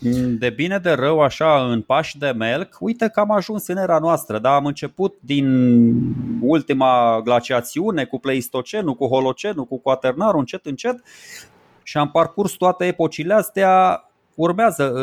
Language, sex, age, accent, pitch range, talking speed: Romanian, male, 20-39, native, 125-175 Hz, 150 wpm